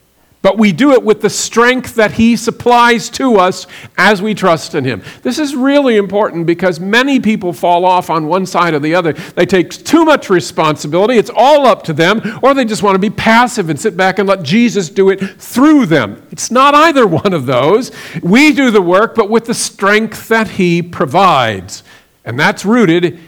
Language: English